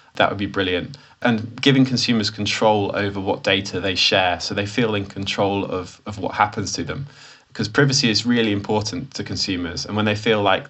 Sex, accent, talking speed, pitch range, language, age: male, British, 200 wpm, 100-120 Hz, English, 20-39